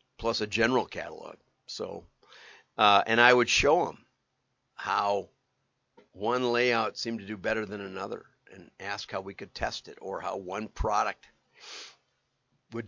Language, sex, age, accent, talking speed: English, male, 50-69, American, 150 wpm